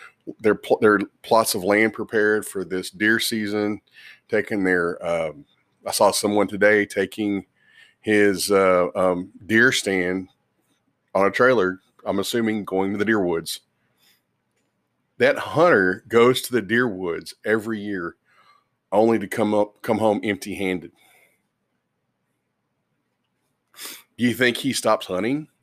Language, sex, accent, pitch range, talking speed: English, male, American, 95-115 Hz, 130 wpm